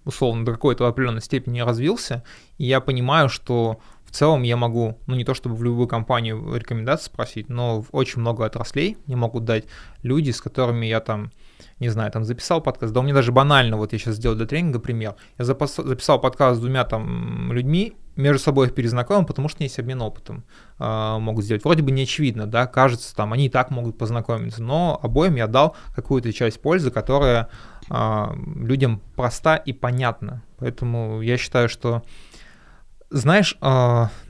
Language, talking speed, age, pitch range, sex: Russian, 175 wpm, 20-39, 115-140 Hz, male